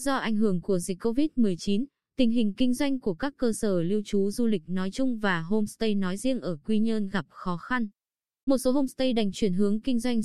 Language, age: Vietnamese, 20-39